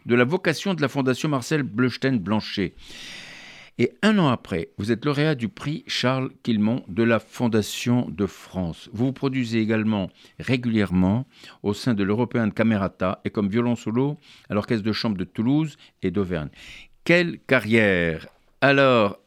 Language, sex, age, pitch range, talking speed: French, male, 60-79, 105-140 Hz, 155 wpm